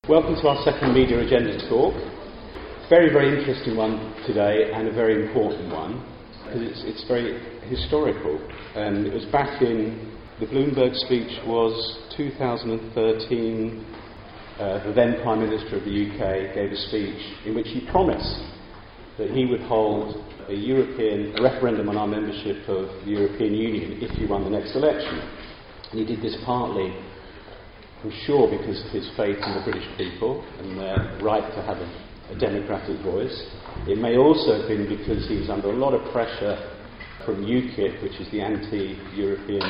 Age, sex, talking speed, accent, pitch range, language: 40-59, male, 170 wpm, British, 105-120 Hz, English